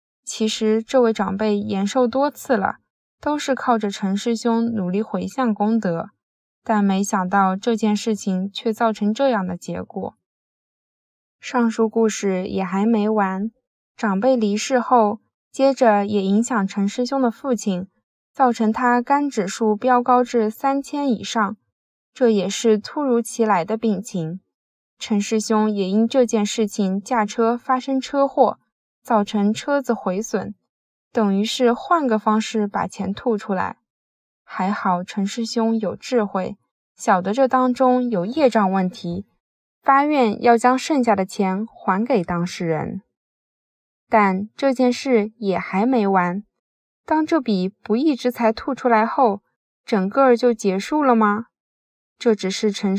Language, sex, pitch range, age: Chinese, female, 200-245 Hz, 10-29